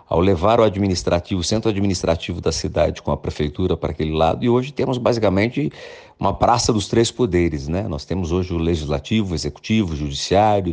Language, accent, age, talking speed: Portuguese, Brazilian, 50-69, 190 wpm